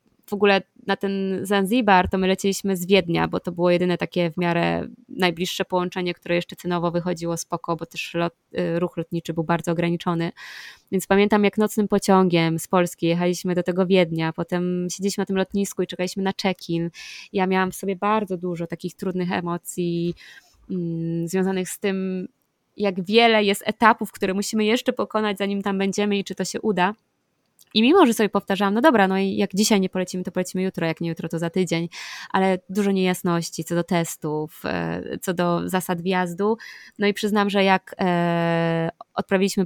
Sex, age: female, 20-39